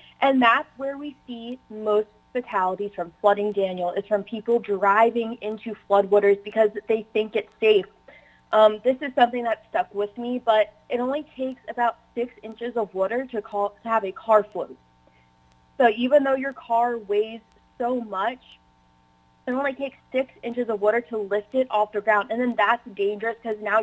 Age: 20-39